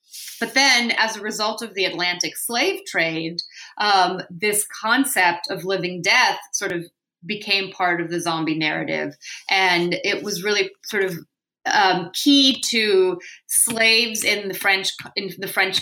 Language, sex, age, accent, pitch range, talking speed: English, female, 30-49, American, 175-215 Hz, 150 wpm